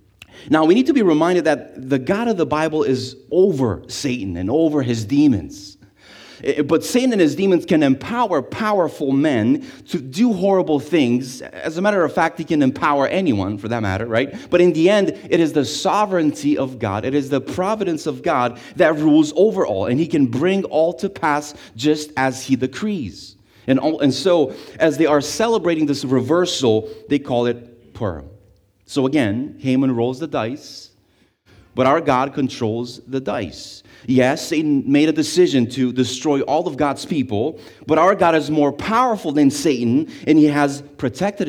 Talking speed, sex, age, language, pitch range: 180 wpm, male, 30-49, English, 125-170 Hz